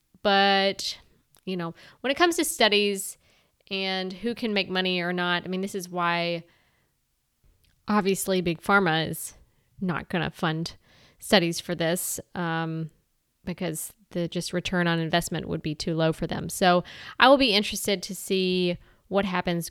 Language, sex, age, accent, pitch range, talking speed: English, female, 20-39, American, 175-210 Hz, 160 wpm